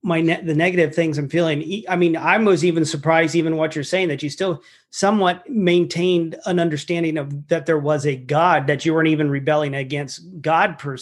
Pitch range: 155-190 Hz